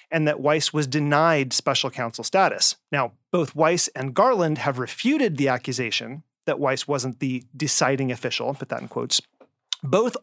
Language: English